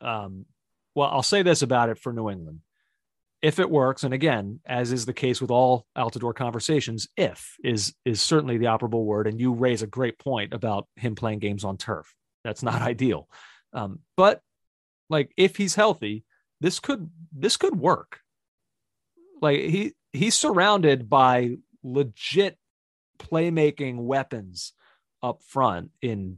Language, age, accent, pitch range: English, 30-49, American, 110-155 Hz